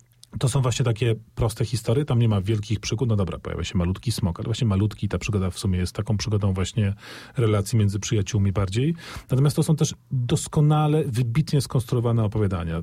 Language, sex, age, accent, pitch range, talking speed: Polish, male, 40-59, native, 110-140 Hz, 185 wpm